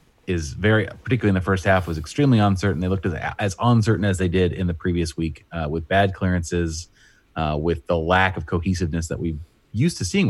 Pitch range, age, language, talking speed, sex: 85-105 Hz, 30-49, English, 215 wpm, male